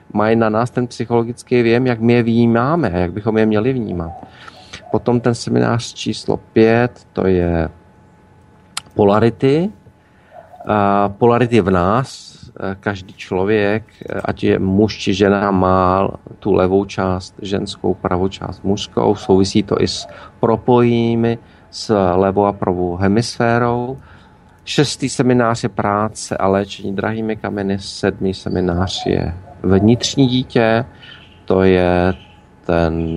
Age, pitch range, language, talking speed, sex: 40-59, 95-115 Hz, Slovak, 120 wpm, male